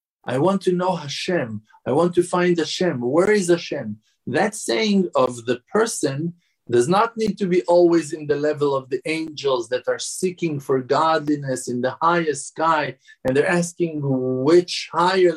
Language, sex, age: English, male, 50-69